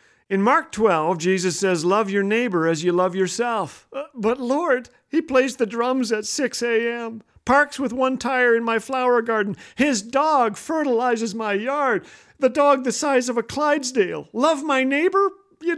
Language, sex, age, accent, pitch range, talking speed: English, male, 50-69, American, 190-270 Hz, 175 wpm